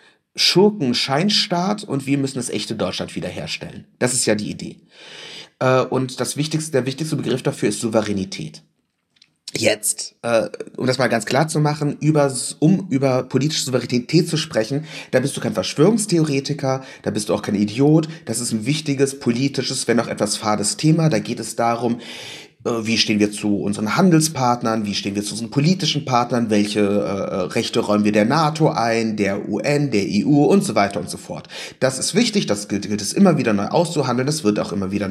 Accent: German